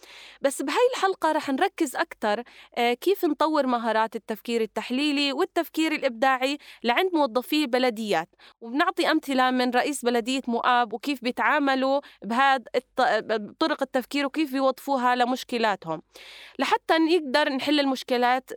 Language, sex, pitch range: Arabic, female, 225-290 Hz